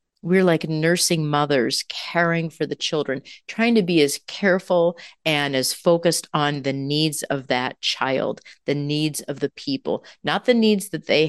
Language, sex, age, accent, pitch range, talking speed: English, female, 40-59, American, 140-175 Hz, 170 wpm